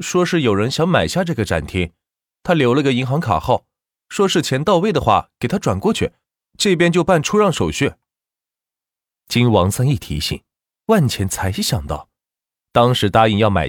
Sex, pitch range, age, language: male, 85-135 Hz, 20-39, Chinese